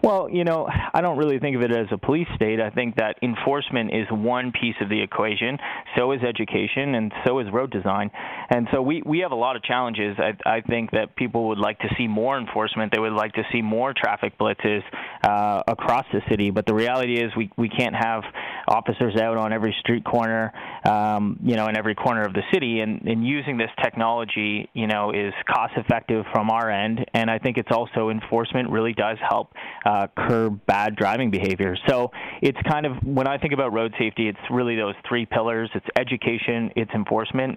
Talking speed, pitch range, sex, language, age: 210 wpm, 110-125 Hz, male, English, 20-39